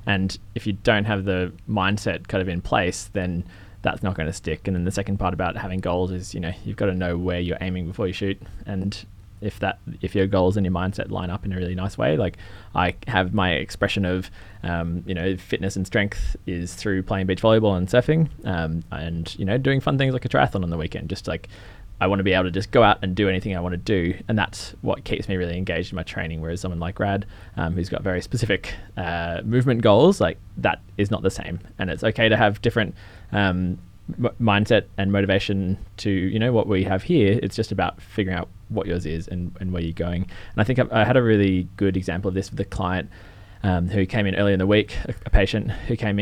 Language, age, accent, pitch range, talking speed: English, 20-39, Australian, 90-105 Hz, 245 wpm